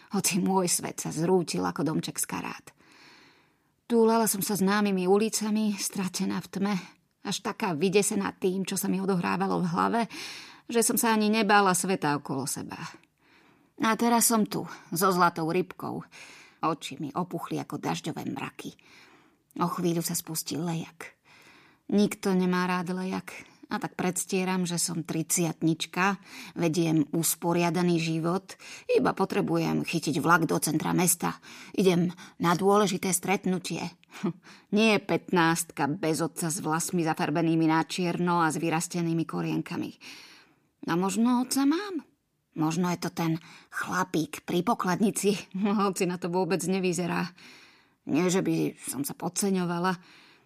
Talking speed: 135 wpm